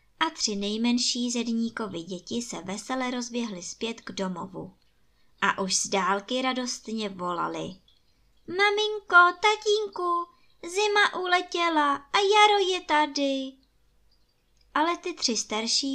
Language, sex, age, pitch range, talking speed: Czech, male, 20-39, 190-270 Hz, 110 wpm